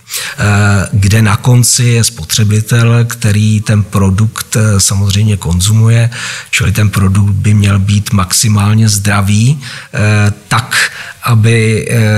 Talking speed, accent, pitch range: 100 wpm, native, 100-115 Hz